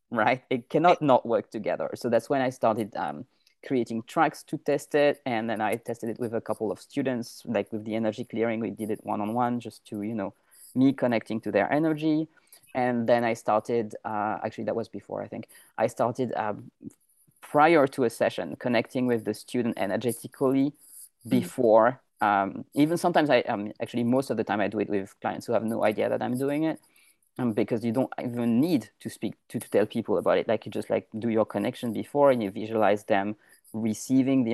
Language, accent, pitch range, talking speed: English, French, 110-135 Hz, 205 wpm